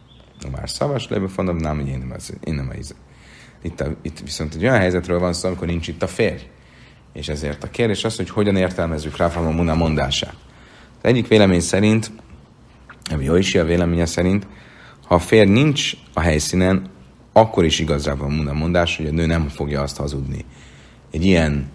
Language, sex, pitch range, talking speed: Hungarian, male, 70-95 Hz, 175 wpm